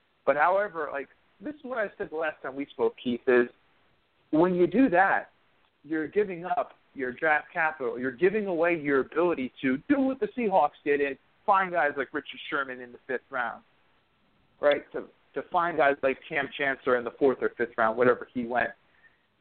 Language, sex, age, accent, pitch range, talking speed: English, male, 40-59, American, 140-205 Hz, 195 wpm